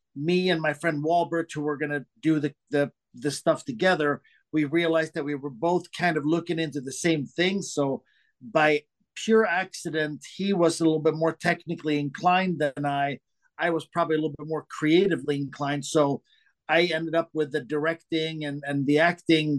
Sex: male